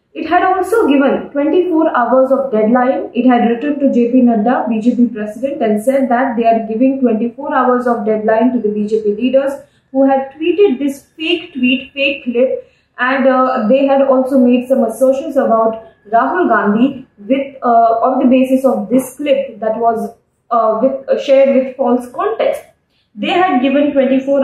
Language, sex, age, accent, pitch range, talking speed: English, female, 20-39, Indian, 230-275 Hz, 170 wpm